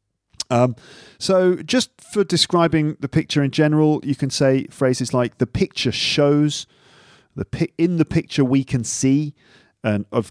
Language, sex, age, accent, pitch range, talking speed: English, male, 40-59, British, 105-145 Hz, 155 wpm